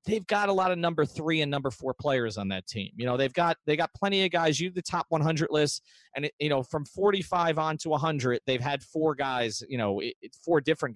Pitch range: 125-165 Hz